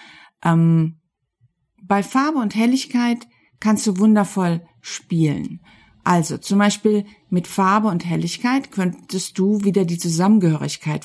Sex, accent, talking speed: female, German, 115 wpm